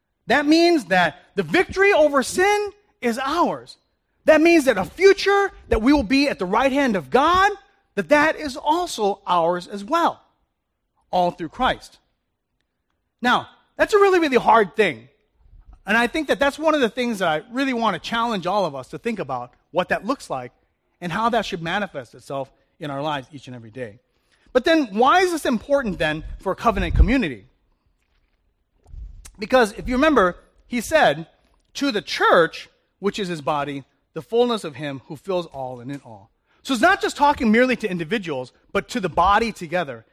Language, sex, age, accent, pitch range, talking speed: English, male, 30-49, American, 170-280 Hz, 190 wpm